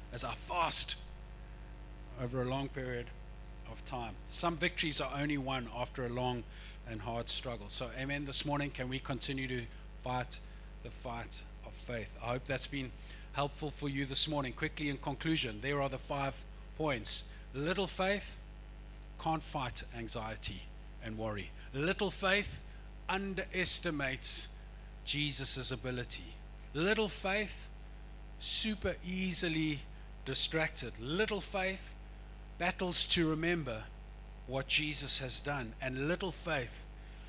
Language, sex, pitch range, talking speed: English, male, 130-165 Hz, 125 wpm